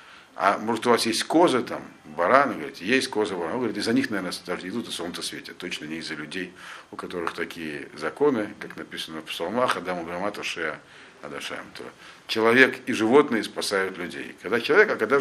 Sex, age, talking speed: male, 50-69, 185 wpm